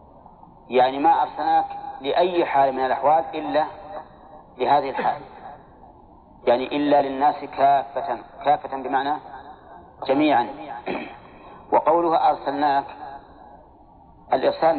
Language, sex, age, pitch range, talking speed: Arabic, male, 40-59, 130-160 Hz, 80 wpm